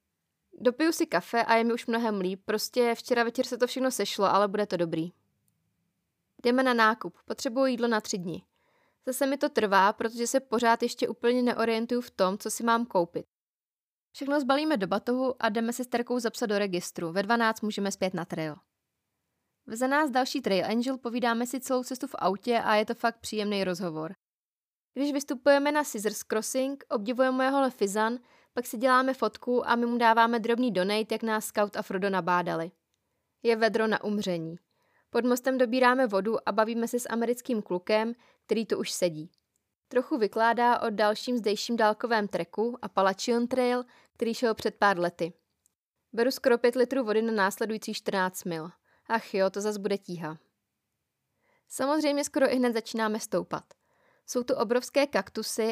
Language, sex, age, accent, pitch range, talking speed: Czech, female, 20-39, native, 205-250 Hz, 170 wpm